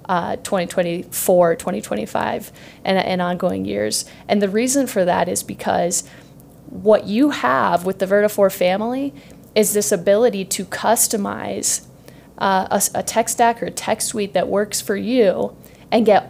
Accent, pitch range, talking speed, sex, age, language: American, 185-220 Hz, 150 wpm, female, 30-49, English